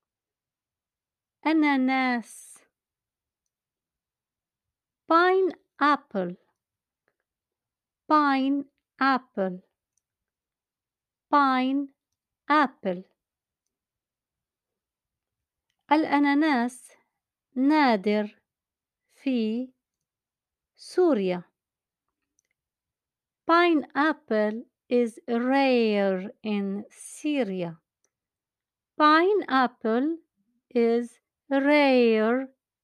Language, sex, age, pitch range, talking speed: Arabic, female, 50-69, 225-290 Hz, 40 wpm